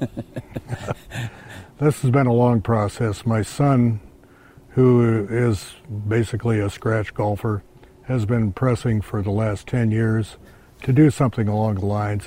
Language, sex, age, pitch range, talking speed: English, male, 60-79, 105-125 Hz, 135 wpm